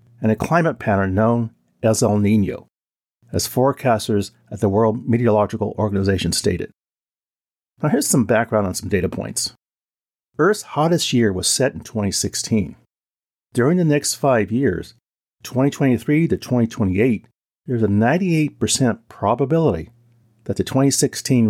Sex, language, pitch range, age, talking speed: male, English, 105-130 Hz, 40-59, 125 wpm